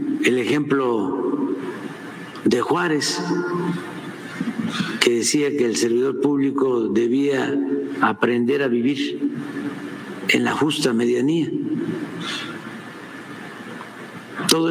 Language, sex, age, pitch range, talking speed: Spanish, male, 60-79, 130-185 Hz, 80 wpm